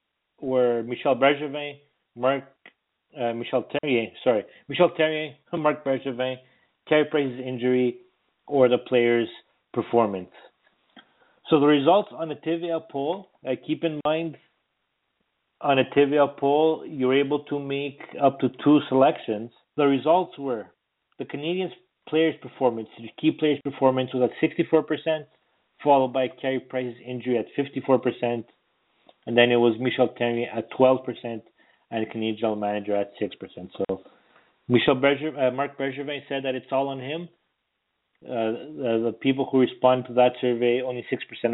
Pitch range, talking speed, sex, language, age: 120-145 Hz, 150 wpm, male, English, 30-49